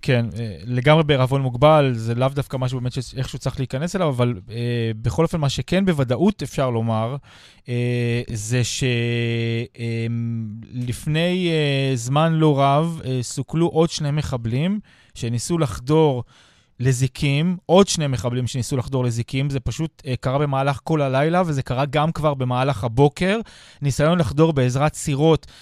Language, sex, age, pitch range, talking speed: Hebrew, male, 20-39, 125-155 Hz, 145 wpm